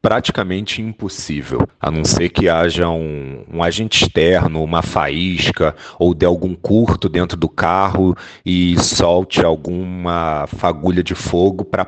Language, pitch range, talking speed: Portuguese, 80-95 Hz, 135 wpm